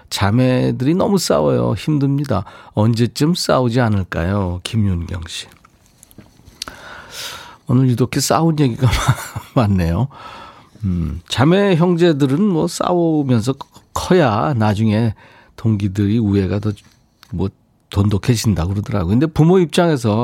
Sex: male